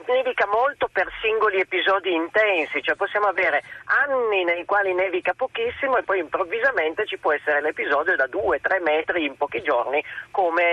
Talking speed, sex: 155 wpm, male